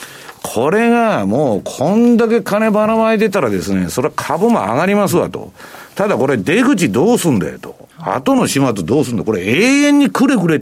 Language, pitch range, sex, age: Japanese, 135-220 Hz, male, 50-69